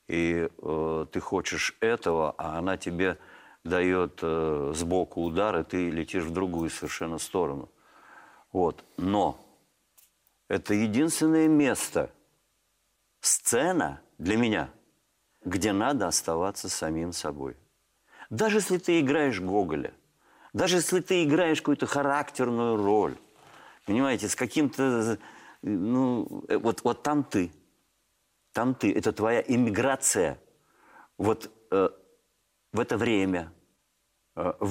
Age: 50-69